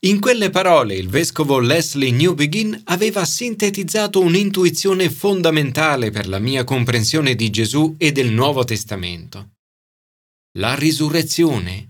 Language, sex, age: Italian, male, 30-49